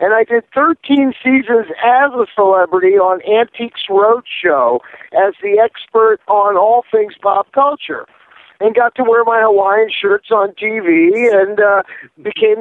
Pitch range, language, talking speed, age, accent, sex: 200-270 Hz, English, 150 wpm, 50-69, American, male